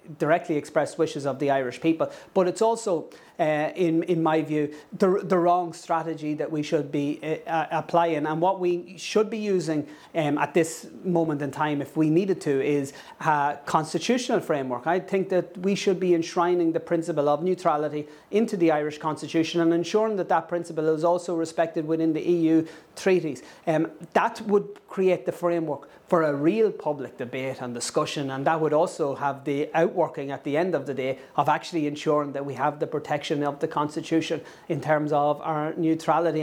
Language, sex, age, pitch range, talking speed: English, male, 30-49, 150-175 Hz, 190 wpm